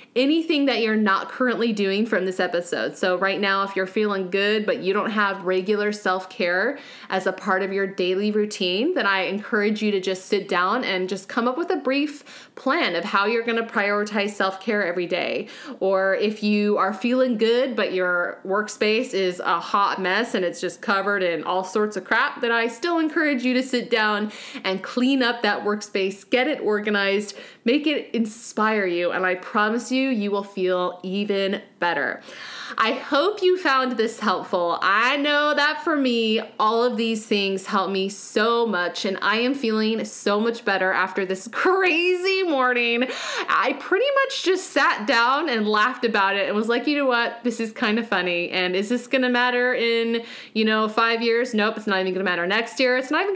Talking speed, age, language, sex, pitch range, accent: 200 wpm, 20-39, English, female, 195-245 Hz, American